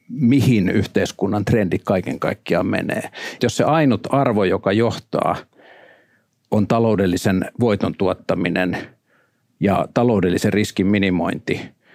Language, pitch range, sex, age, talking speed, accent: Finnish, 105-120 Hz, male, 50-69, 100 wpm, native